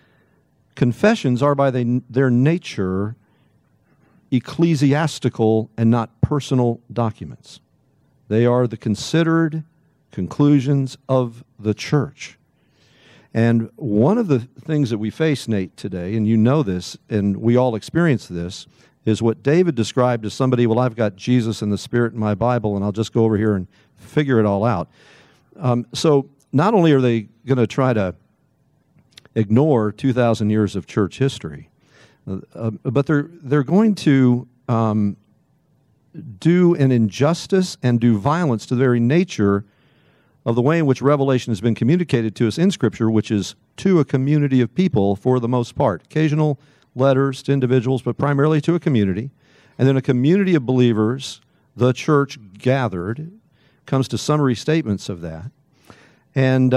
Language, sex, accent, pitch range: English, male, American, 110-145 Hz